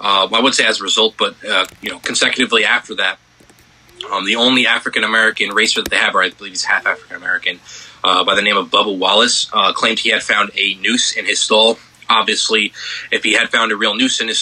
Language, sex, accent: English, male, American